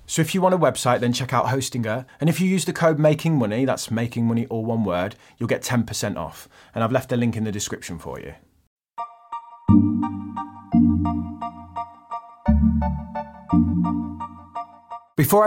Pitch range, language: 100-140 Hz, English